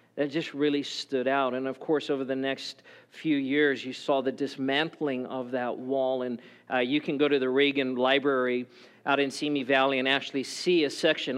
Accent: American